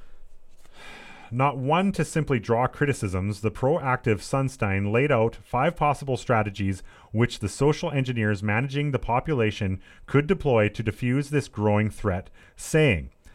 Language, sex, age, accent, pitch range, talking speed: English, male, 30-49, American, 105-140 Hz, 130 wpm